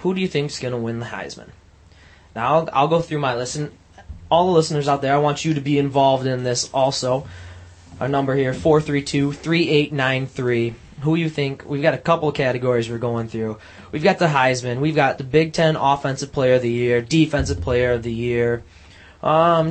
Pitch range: 110-145 Hz